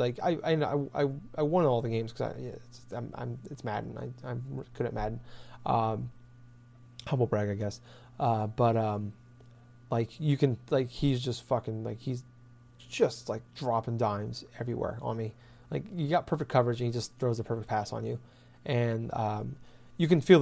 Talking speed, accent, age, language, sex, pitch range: 185 wpm, American, 30-49, English, male, 115-135 Hz